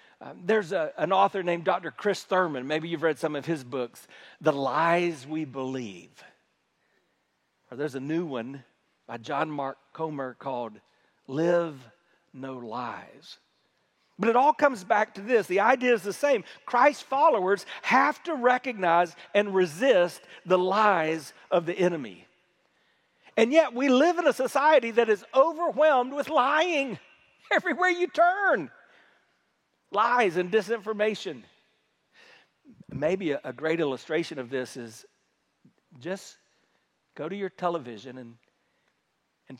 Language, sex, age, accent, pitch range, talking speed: English, male, 50-69, American, 160-255 Hz, 135 wpm